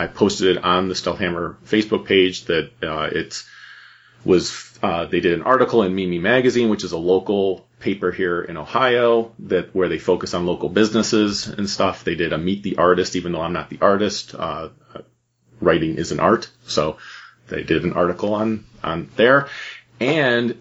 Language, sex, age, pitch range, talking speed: English, male, 30-49, 90-115 Hz, 185 wpm